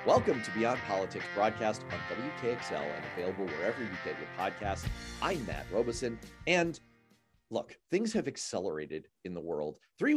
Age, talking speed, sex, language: 40-59, 155 wpm, male, English